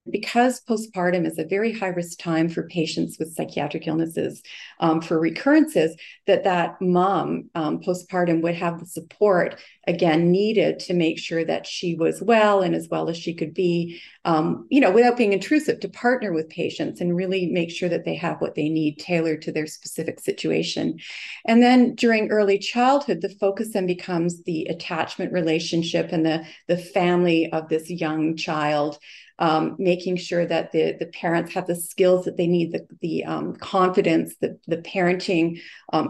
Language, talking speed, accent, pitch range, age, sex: English, 180 wpm, American, 160-190 Hz, 40-59, female